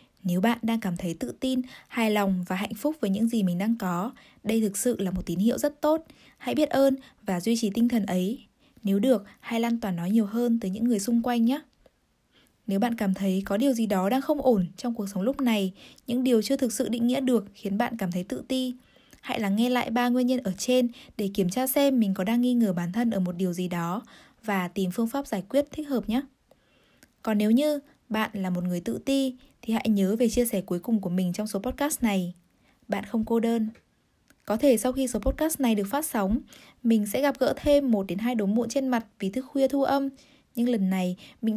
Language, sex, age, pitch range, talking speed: Vietnamese, female, 10-29, 200-260 Hz, 245 wpm